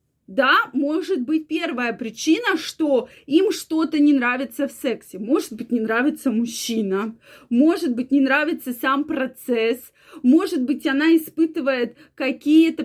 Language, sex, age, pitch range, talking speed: Russian, female, 20-39, 260-340 Hz, 130 wpm